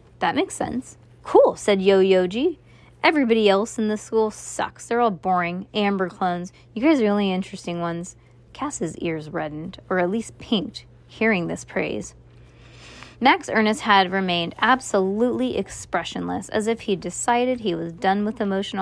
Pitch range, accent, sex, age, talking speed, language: 175-240 Hz, American, female, 20-39, 160 wpm, English